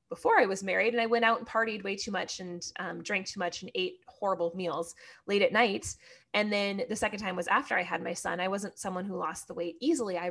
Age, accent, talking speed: 20-39, American, 260 wpm